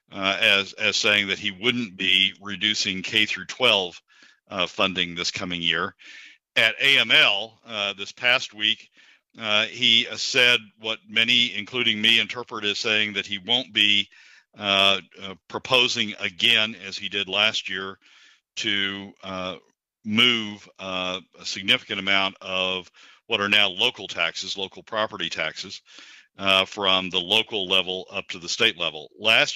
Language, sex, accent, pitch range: English, male, American, 95-110 Hz